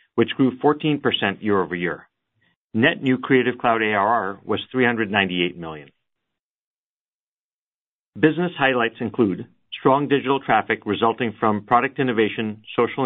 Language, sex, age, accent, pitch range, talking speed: English, male, 40-59, American, 105-125 Hz, 115 wpm